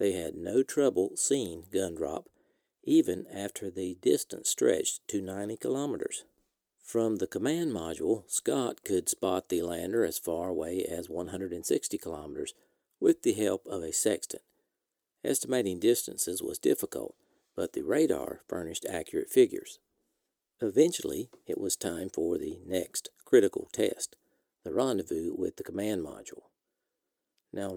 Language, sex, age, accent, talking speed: English, male, 50-69, American, 135 wpm